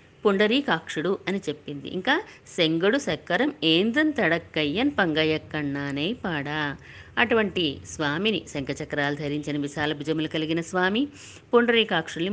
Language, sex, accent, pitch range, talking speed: Telugu, female, native, 155-220 Hz, 95 wpm